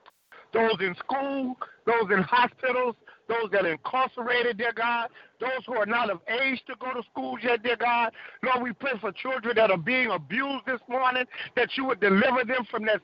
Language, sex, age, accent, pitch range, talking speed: English, male, 50-69, American, 215-260 Hz, 200 wpm